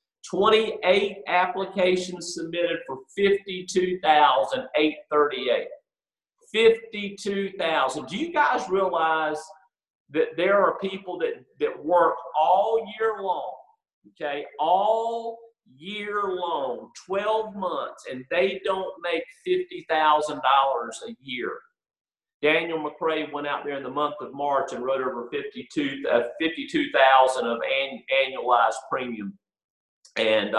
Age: 50-69